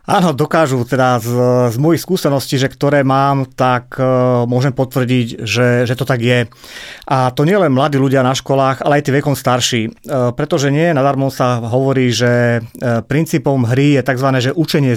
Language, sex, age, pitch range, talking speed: Slovak, male, 30-49, 125-150 Hz, 165 wpm